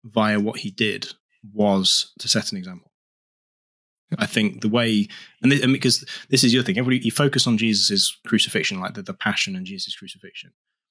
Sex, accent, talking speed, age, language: male, British, 170 wpm, 20-39, English